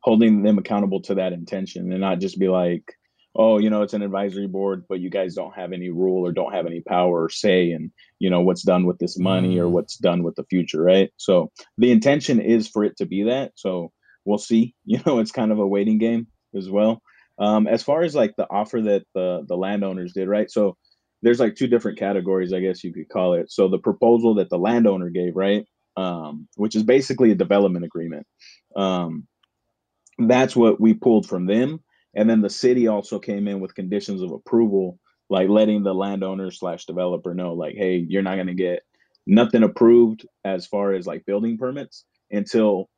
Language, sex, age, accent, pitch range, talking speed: English, male, 30-49, American, 90-110 Hz, 210 wpm